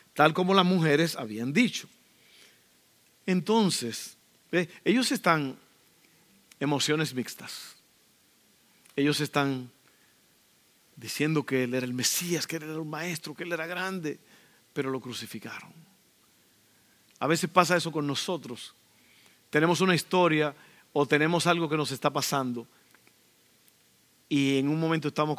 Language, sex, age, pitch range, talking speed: Spanish, male, 50-69, 135-195 Hz, 125 wpm